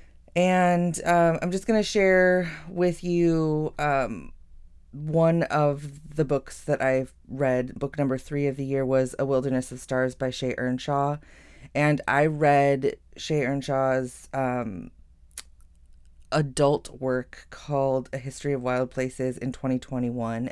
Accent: American